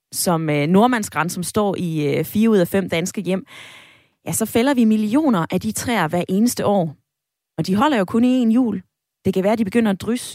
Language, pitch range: Danish, 170-230 Hz